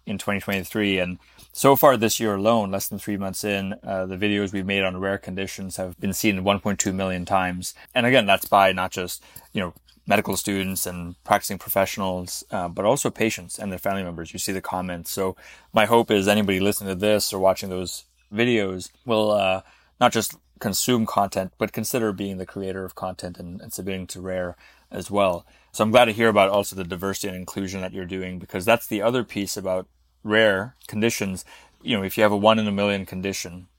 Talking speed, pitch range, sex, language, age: 210 wpm, 95-105 Hz, male, English, 20-39